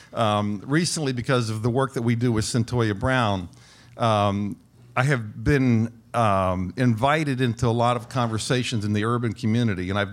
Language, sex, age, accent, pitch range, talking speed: English, male, 50-69, American, 110-135 Hz, 170 wpm